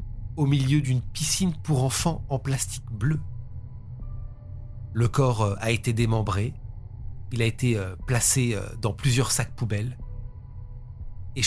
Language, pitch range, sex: French, 110-145 Hz, male